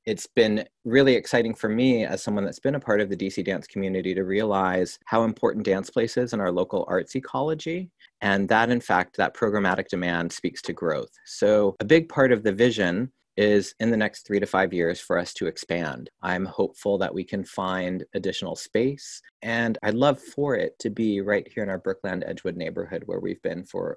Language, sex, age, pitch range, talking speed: English, male, 30-49, 95-125 Hz, 210 wpm